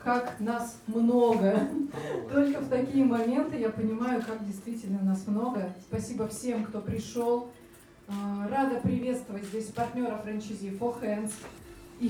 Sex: female